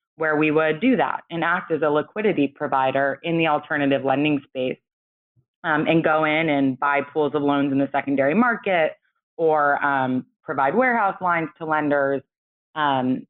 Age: 20-39